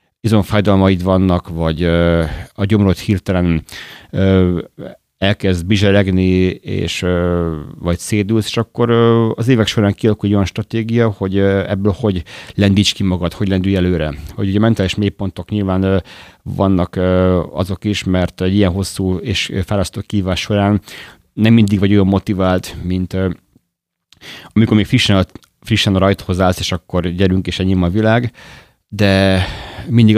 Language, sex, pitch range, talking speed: Hungarian, male, 90-105 Hz, 150 wpm